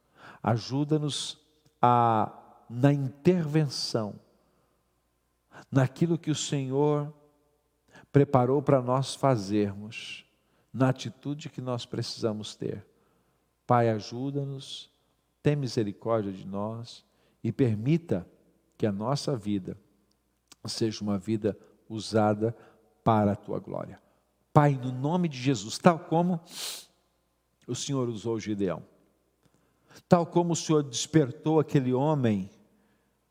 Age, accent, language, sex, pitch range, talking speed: 50-69, Brazilian, Portuguese, male, 105-140 Hz, 100 wpm